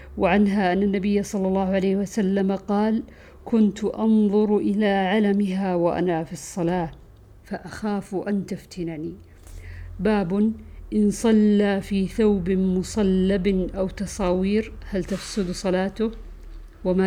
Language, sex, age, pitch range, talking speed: Arabic, female, 50-69, 175-205 Hz, 105 wpm